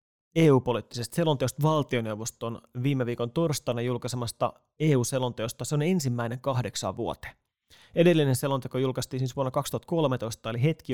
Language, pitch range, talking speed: Finnish, 115-140 Hz, 115 wpm